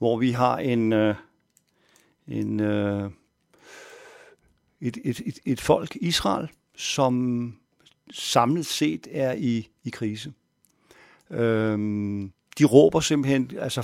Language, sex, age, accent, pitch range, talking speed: Danish, male, 50-69, native, 110-140 Hz, 90 wpm